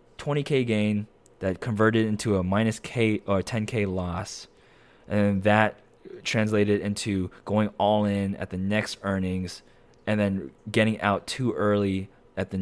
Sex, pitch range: male, 95-115 Hz